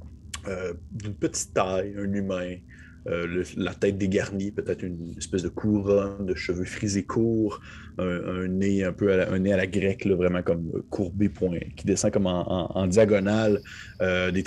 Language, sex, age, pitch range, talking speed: French, male, 30-49, 90-105 Hz, 185 wpm